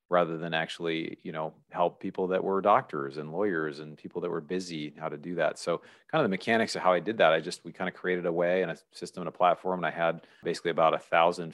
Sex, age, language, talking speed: male, 30-49, English, 270 wpm